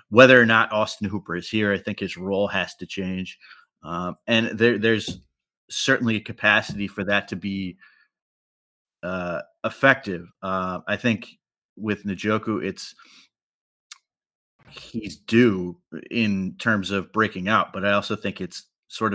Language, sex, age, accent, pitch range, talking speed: English, male, 30-49, American, 95-110 Hz, 145 wpm